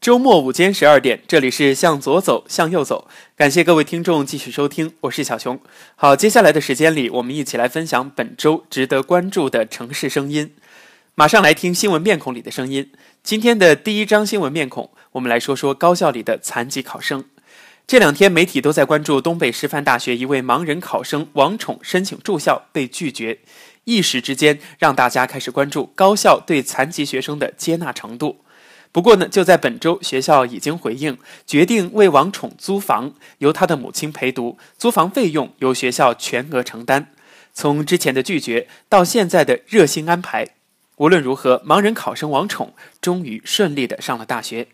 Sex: male